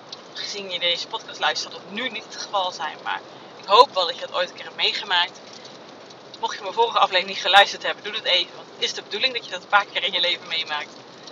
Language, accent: Dutch, Dutch